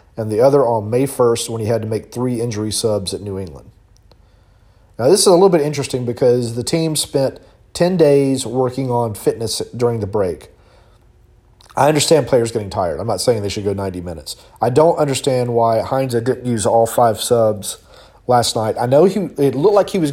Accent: American